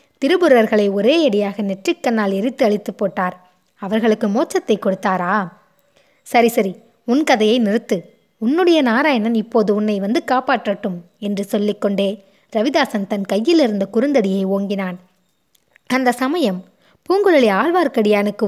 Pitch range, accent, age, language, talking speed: 200-255 Hz, native, 20-39, Tamil, 105 wpm